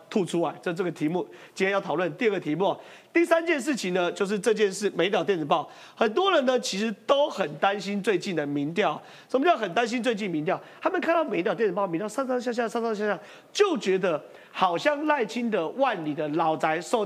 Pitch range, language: 170-245 Hz, Chinese